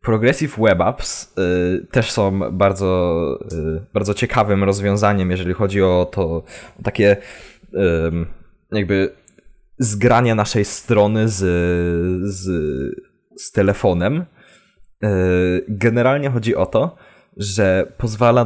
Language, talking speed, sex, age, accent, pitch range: Polish, 105 wpm, male, 20-39, native, 90-110 Hz